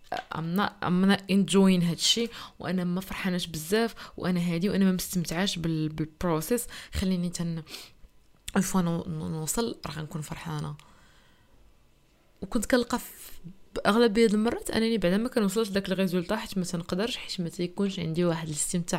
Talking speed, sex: 135 wpm, female